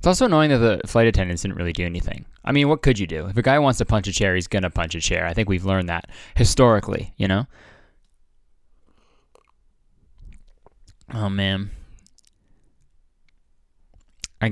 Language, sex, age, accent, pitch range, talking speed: English, male, 20-39, American, 90-130 Hz, 170 wpm